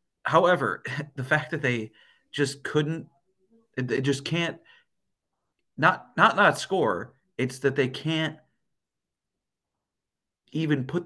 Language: English